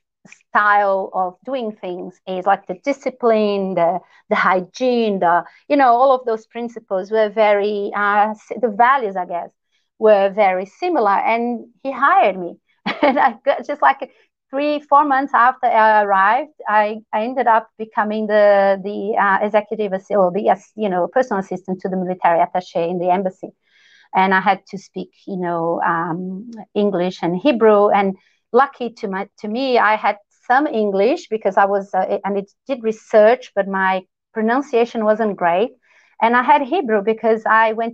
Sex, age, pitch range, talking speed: female, 30-49, 195-250 Hz, 165 wpm